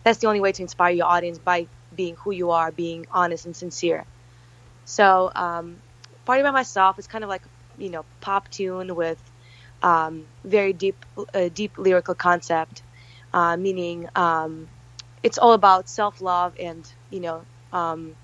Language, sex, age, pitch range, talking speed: English, female, 20-39, 125-185 Hz, 160 wpm